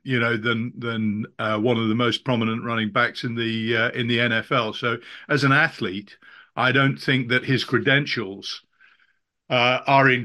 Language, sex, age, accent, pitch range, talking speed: English, male, 50-69, British, 115-135 Hz, 180 wpm